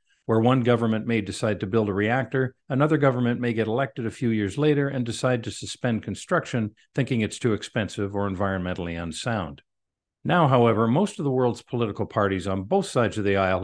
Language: English